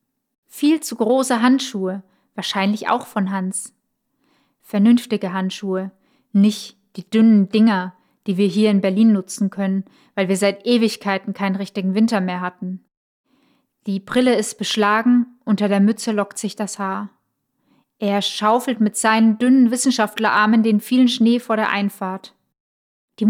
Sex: female